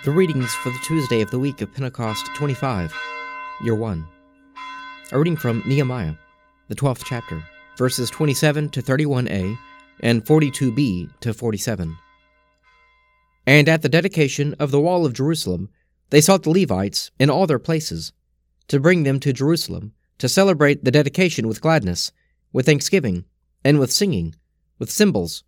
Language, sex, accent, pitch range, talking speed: English, male, American, 95-155 Hz, 150 wpm